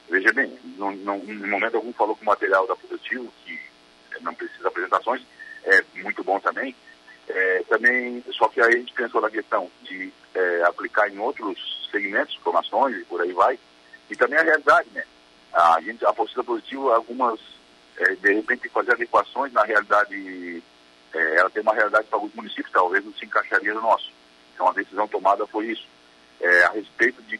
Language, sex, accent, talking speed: Portuguese, male, Brazilian, 180 wpm